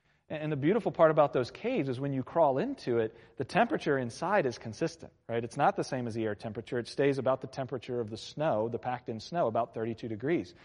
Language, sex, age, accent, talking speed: English, male, 40-59, American, 230 wpm